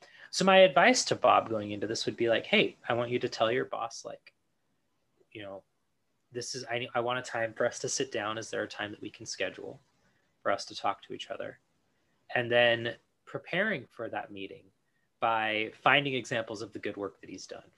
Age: 20-39